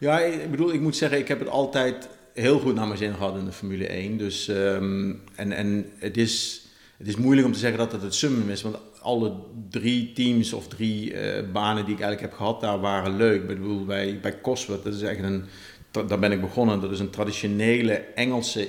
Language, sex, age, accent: Dutch, male, 50-69, Dutch